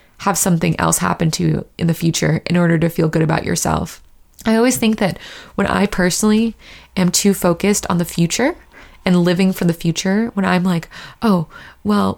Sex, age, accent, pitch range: female, 20-39, American, 180-215 Hz